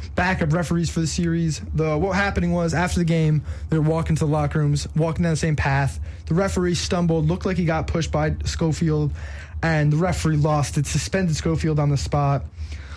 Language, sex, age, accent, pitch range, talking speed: English, male, 20-39, American, 135-165 Hz, 200 wpm